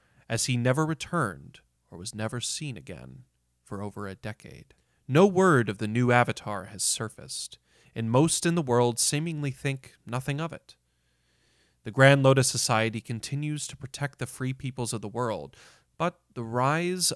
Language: English